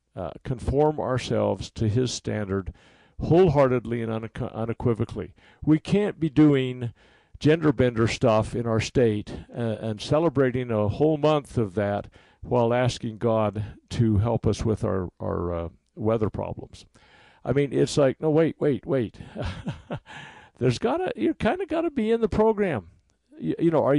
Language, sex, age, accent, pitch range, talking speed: English, male, 50-69, American, 110-145 Hz, 160 wpm